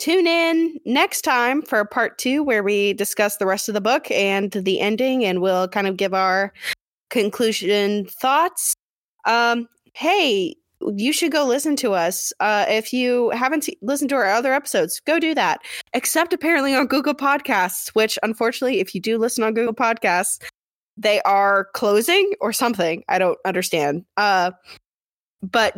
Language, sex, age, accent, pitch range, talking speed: English, female, 20-39, American, 195-260 Hz, 165 wpm